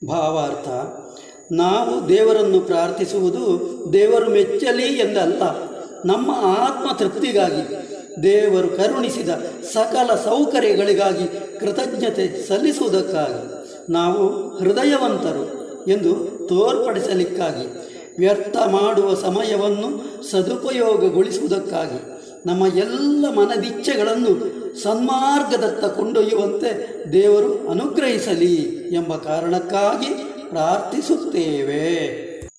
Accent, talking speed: native, 60 wpm